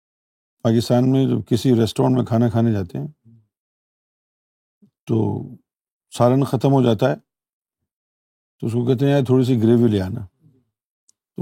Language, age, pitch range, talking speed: Urdu, 50-69, 115-150 Hz, 145 wpm